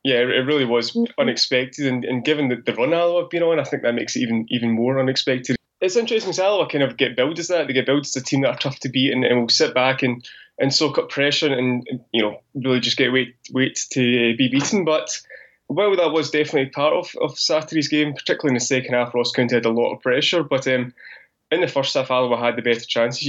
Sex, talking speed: male, 260 wpm